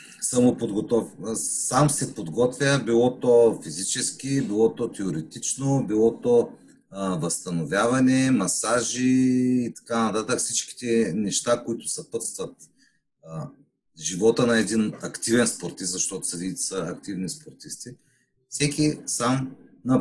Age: 40-59